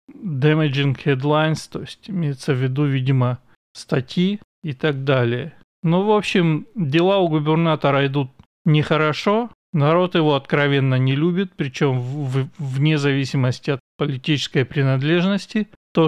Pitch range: 140-170 Hz